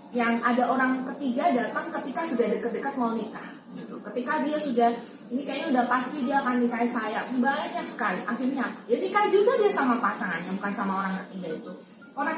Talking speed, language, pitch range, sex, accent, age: 185 wpm, Indonesian, 220-265 Hz, female, native, 20-39